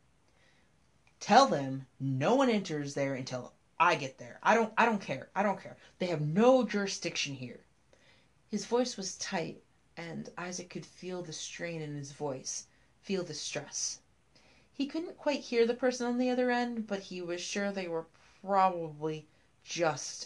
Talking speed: 170 wpm